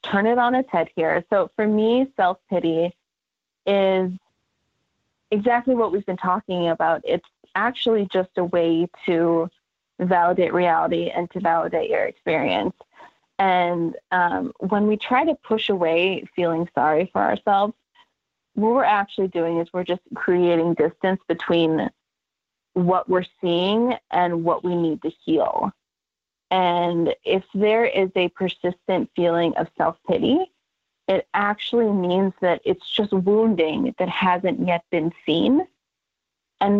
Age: 30-49